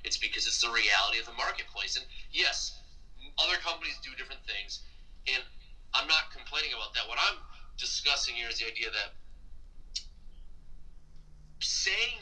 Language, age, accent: English, 30-49, American